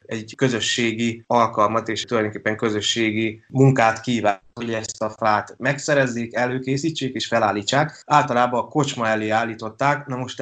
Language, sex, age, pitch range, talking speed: Hungarian, male, 20-39, 110-130 Hz, 130 wpm